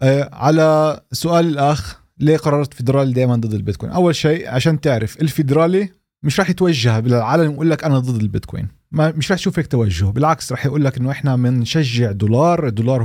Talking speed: 165 wpm